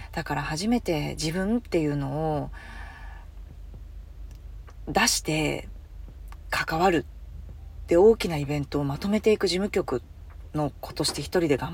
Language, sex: Japanese, female